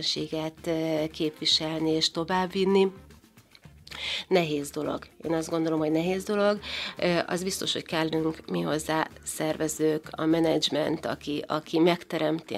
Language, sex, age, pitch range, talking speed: Hungarian, female, 30-49, 155-170 Hz, 110 wpm